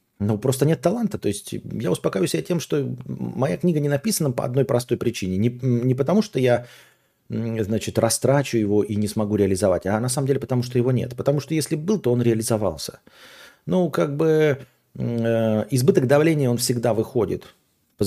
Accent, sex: native, male